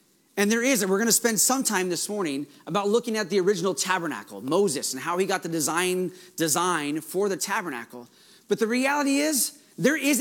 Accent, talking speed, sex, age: American, 205 wpm, male, 30-49